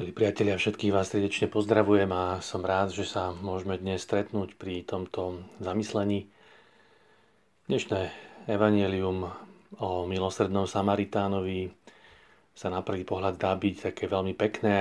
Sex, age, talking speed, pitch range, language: male, 40-59, 120 wpm, 95-105 Hz, Slovak